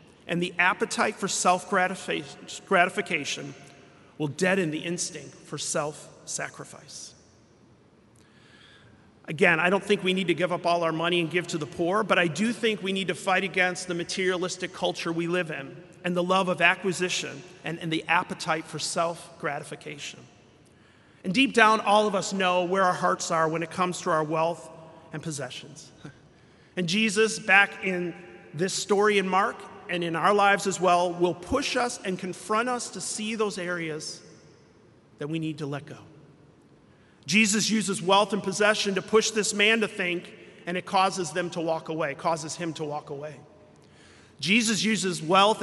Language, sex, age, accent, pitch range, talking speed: English, male, 40-59, American, 165-195 Hz, 170 wpm